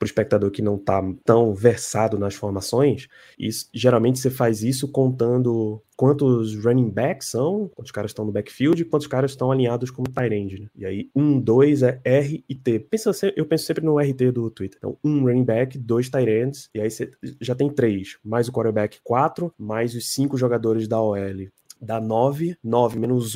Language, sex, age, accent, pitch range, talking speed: Portuguese, male, 20-39, Brazilian, 110-130 Hz, 200 wpm